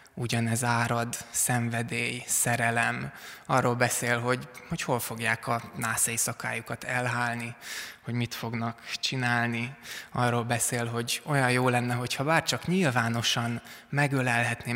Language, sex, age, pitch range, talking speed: Hungarian, male, 20-39, 115-130 Hz, 115 wpm